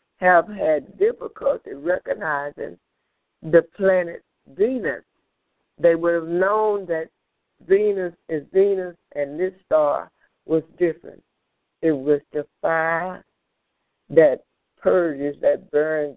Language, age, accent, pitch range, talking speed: English, 60-79, American, 155-195 Hz, 105 wpm